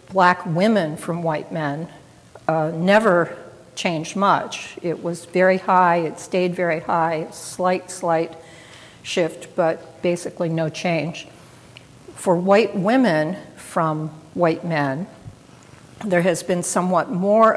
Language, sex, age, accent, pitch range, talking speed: English, female, 60-79, American, 165-185 Hz, 120 wpm